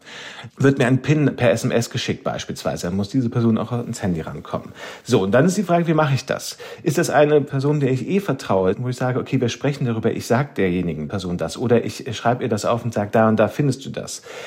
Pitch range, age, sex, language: 115-135 Hz, 40-59, male, German